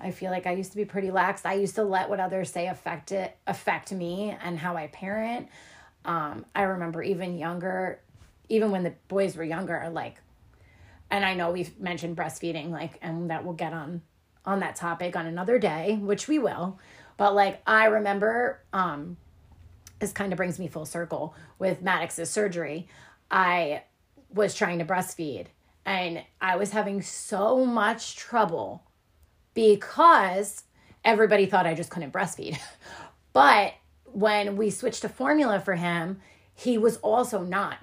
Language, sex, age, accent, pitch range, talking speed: English, female, 30-49, American, 175-220 Hz, 165 wpm